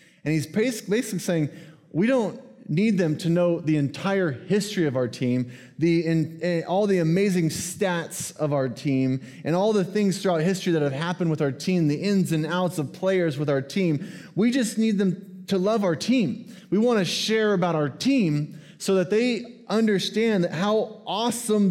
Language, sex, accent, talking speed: English, male, American, 180 wpm